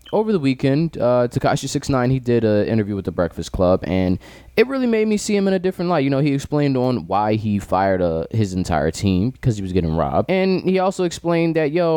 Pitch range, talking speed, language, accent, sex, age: 105-155 Hz, 235 wpm, English, American, male, 20-39